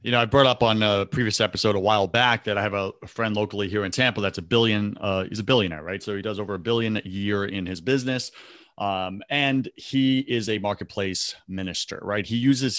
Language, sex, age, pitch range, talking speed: English, male, 30-49, 95-120 Hz, 235 wpm